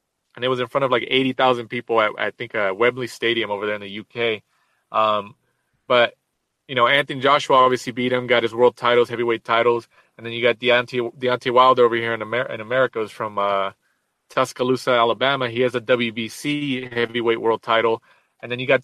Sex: male